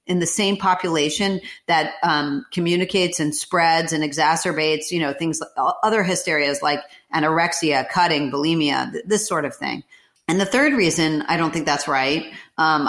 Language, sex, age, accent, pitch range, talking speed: English, female, 40-59, American, 155-195 Hz, 160 wpm